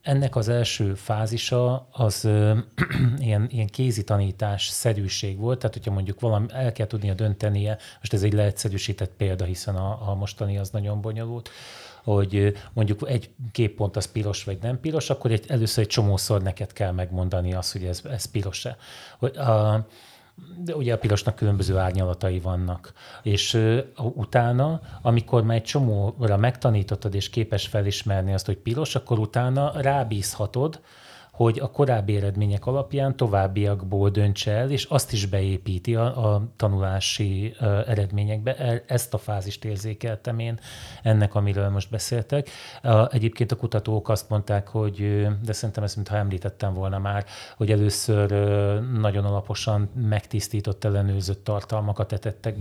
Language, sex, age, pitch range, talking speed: Hungarian, male, 30-49, 100-120 Hz, 145 wpm